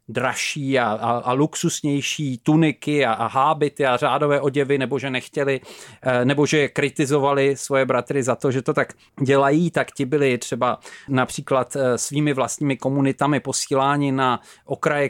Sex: male